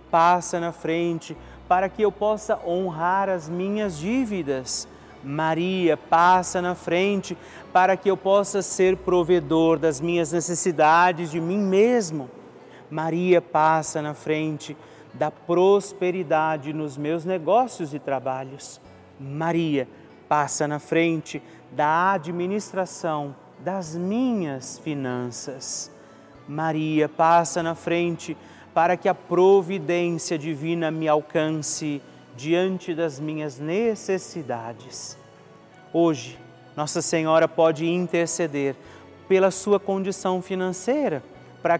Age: 30-49